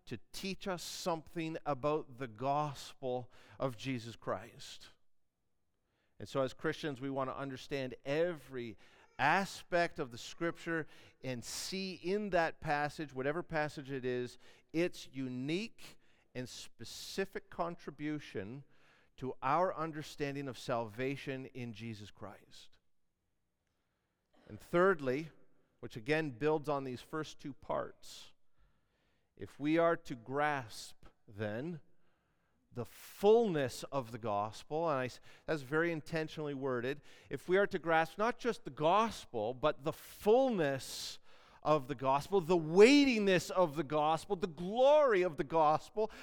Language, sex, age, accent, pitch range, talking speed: English, male, 50-69, American, 130-175 Hz, 125 wpm